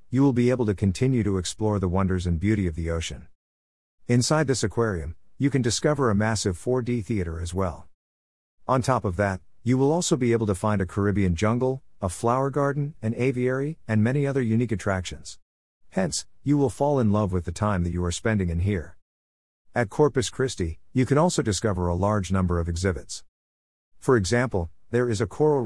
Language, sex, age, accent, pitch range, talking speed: English, male, 50-69, American, 85-120 Hz, 195 wpm